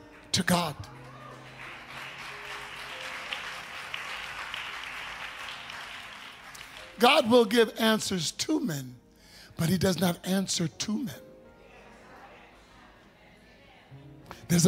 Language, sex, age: English, male, 60-79